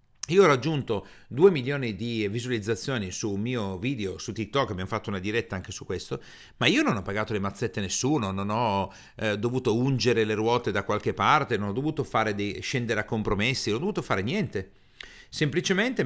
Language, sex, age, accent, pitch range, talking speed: Italian, male, 40-59, native, 110-145 Hz, 200 wpm